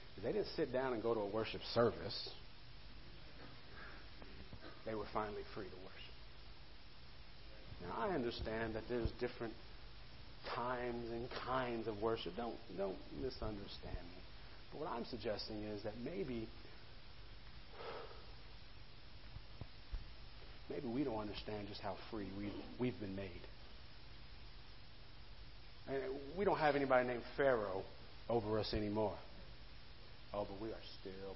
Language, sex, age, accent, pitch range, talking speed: English, male, 40-59, American, 105-125 Hz, 125 wpm